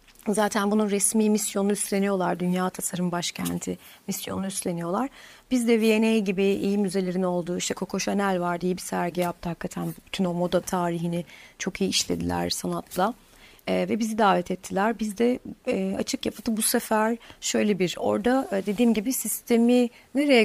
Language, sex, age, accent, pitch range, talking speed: Turkish, female, 40-59, native, 185-230 Hz, 155 wpm